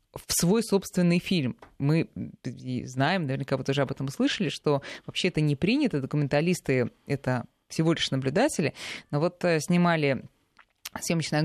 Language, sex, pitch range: Russian, female, 145-195 Hz